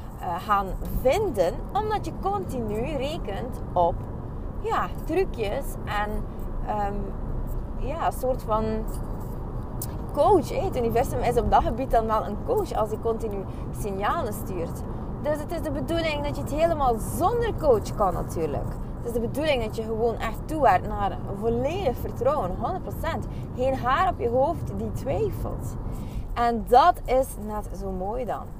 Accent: Dutch